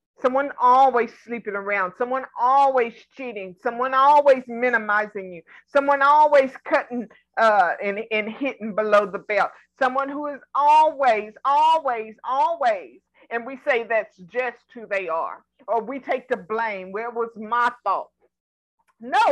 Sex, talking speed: female, 140 wpm